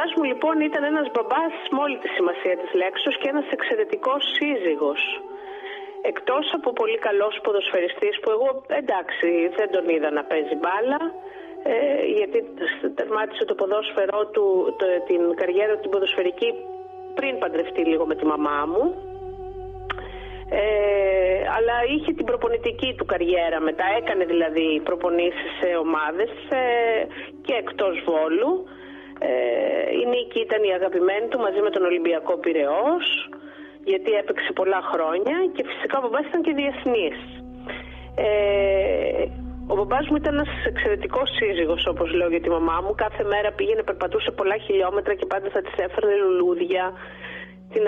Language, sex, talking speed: Greek, female, 145 wpm